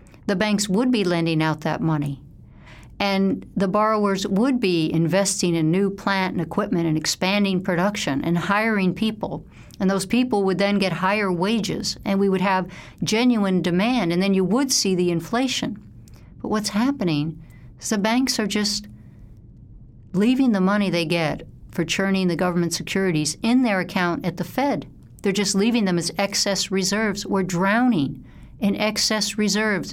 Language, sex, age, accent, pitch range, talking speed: English, female, 60-79, American, 170-205 Hz, 165 wpm